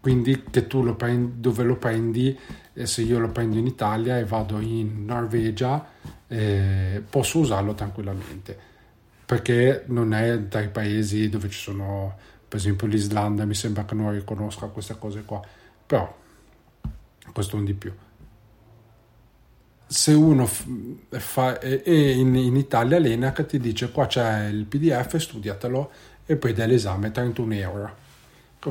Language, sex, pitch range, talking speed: Italian, male, 105-125 Hz, 140 wpm